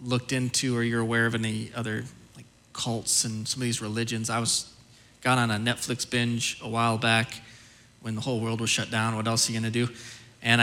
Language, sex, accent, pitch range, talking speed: English, male, American, 115-145 Hz, 220 wpm